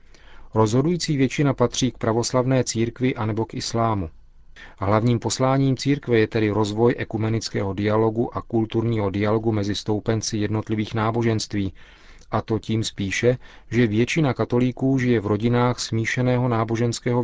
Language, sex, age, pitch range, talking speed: Czech, male, 40-59, 105-120 Hz, 125 wpm